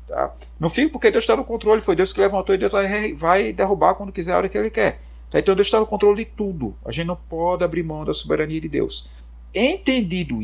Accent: Brazilian